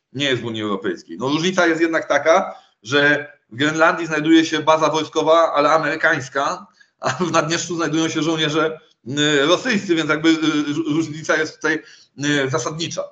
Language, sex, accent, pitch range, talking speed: Polish, male, native, 140-180 Hz, 145 wpm